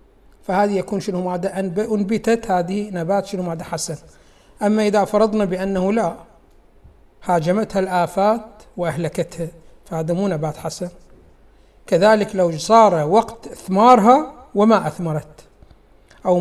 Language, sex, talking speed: Arabic, male, 110 wpm